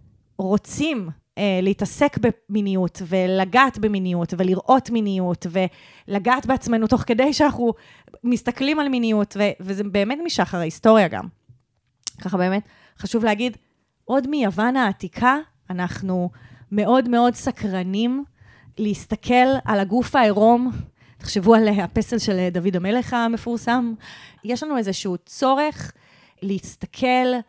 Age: 30-49